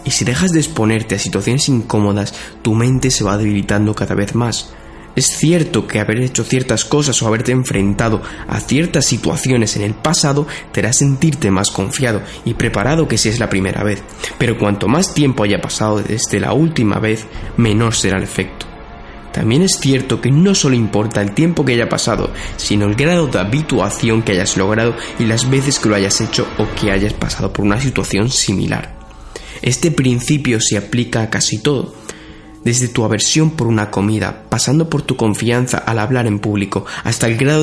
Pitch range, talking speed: 105-135 Hz, 190 wpm